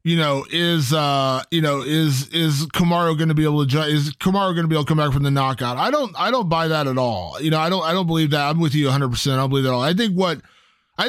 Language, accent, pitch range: English, American, 150-185 Hz